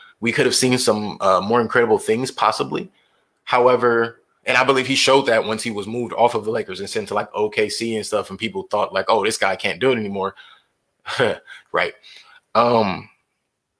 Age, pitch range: 20-39, 110-160 Hz